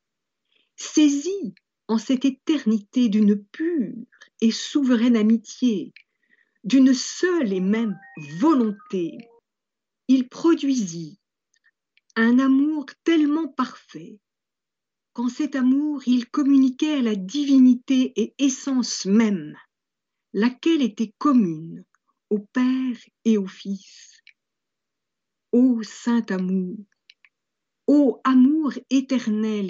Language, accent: French, French